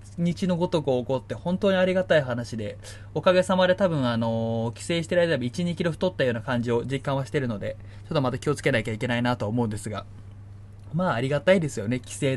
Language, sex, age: Japanese, male, 20-39